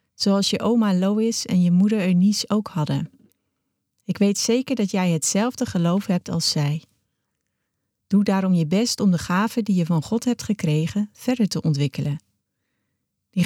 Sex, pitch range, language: female, 155-205 Hz, Dutch